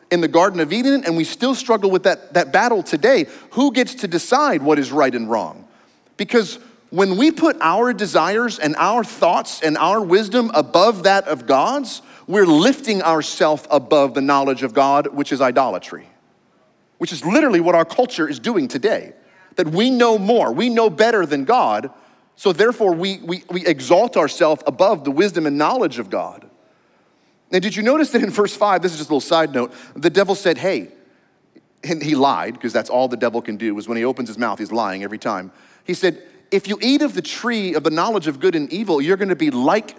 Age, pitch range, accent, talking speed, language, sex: 30-49, 165-245 Hz, American, 210 wpm, English, male